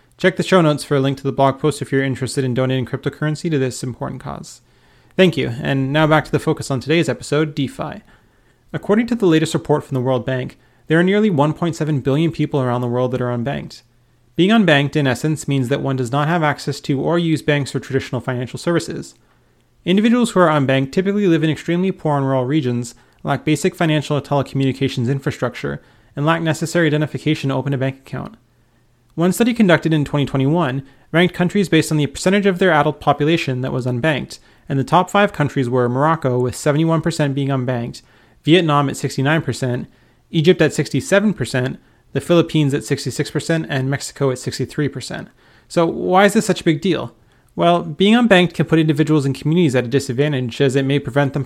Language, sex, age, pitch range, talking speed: English, male, 30-49, 130-160 Hz, 195 wpm